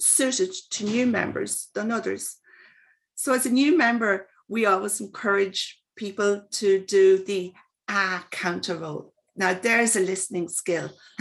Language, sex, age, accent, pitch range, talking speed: English, female, 40-59, British, 195-240 Hz, 140 wpm